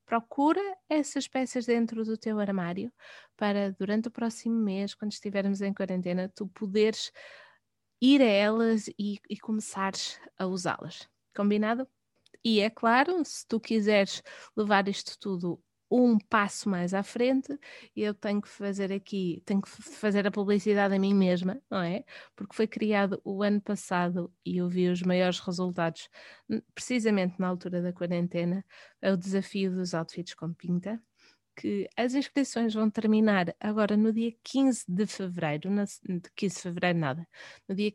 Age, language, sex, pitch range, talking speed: 20-39, Portuguese, female, 185-225 Hz, 155 wpm